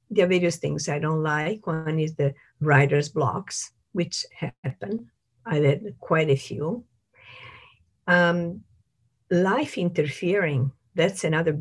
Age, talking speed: 50-69, 125 wpm